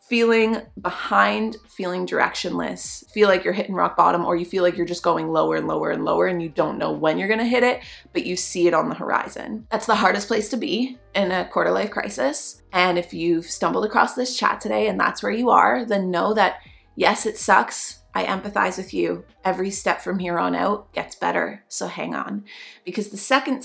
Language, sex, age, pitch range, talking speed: English, female, 20-39, 190-245 Hz, 220 wpm